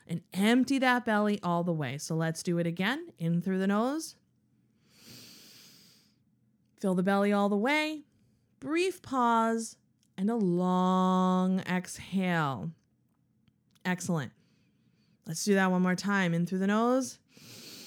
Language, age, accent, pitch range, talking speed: English, 30-49, American, 180-240 Hz, 130 wpm